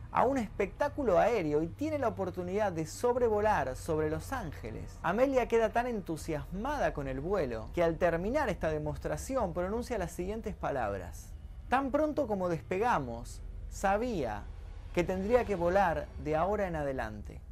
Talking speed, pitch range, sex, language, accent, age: 145 wpm, 155-235 Hz, male, Spanish, Argentinian, 30-49